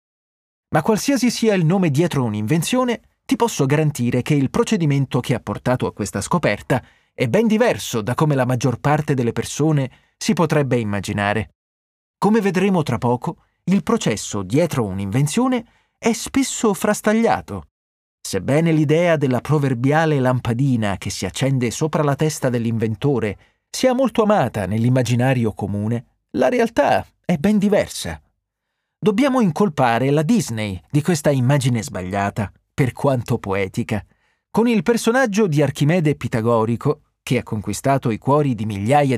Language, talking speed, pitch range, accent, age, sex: Italian, 135 wpm, 120-200 Hz, native, 30-49, male